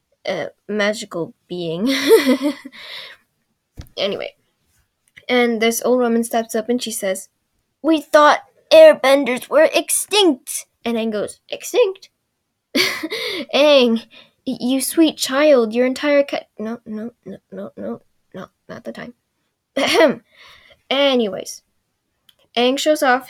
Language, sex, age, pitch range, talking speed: English, female, 10-29, 210-275 Hz, 115 wpm